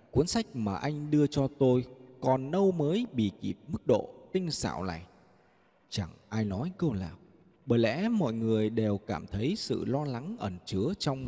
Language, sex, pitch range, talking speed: Vietnamese, male, 105-155 Hz, 185 wpm